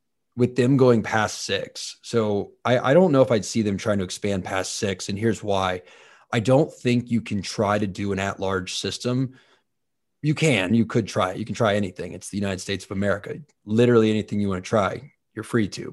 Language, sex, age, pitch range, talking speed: English, male, 30-49, 100-130 Hz, 220 wpm